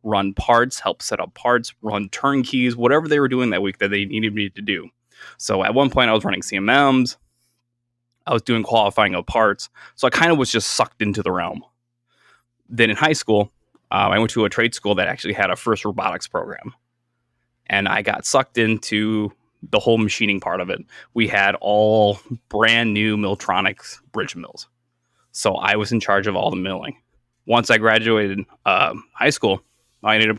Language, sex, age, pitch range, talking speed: English, male, 20-39, 105-120 Hz, 195 wpm